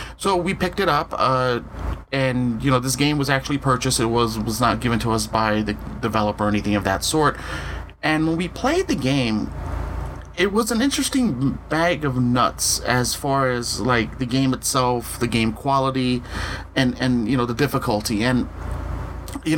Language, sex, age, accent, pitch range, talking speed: English, male, 30-49, American, 105-135 Hz, 185 wpm